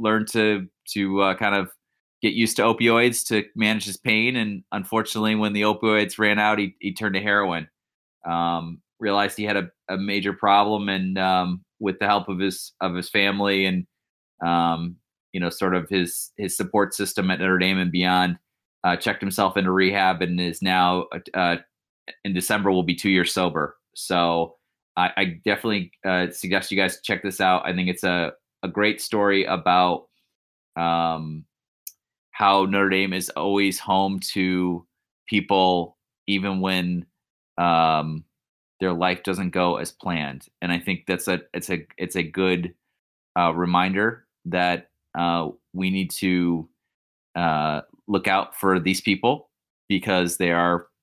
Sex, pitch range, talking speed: male, 90-100 Hz, 160 wpm